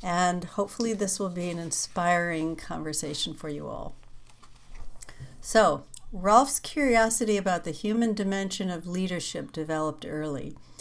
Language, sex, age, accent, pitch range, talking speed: English, female, 60-79, American, 155-195 Hz, 120 wpm